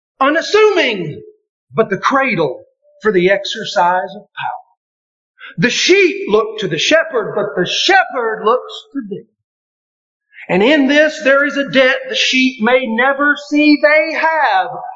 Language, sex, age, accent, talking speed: English, male, 40-59, American, 140 wpm